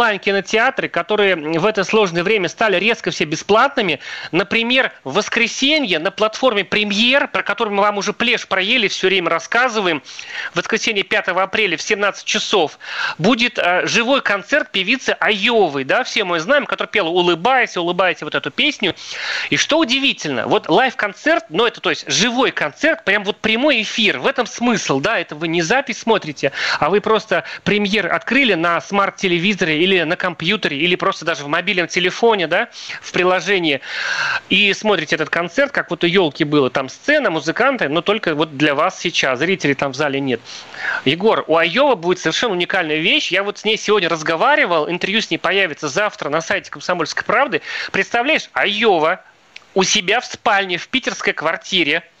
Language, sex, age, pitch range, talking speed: Russian, male, 30-49, 170-225 Hz, 170 wpm